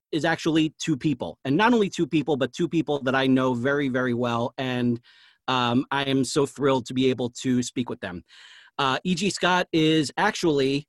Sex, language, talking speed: male, English, 200 wpm